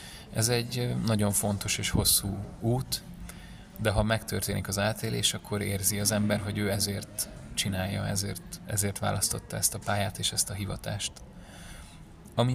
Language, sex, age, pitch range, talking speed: Hungarian, male, 30-49, 100-110 Hz, 150 wpm